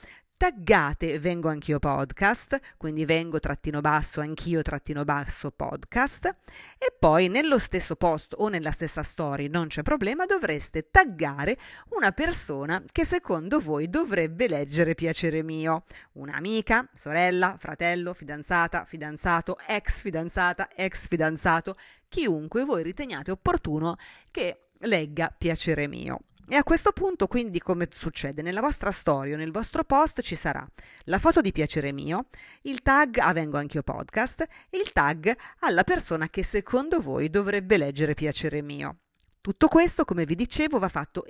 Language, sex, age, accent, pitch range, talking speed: Italian, female, 30-49, native, 155-225 Hz, 140 wpm